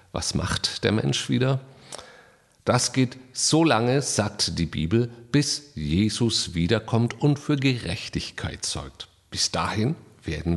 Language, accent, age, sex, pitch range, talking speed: German, German, 50-69, male, 90-125 Hz, 125 wpm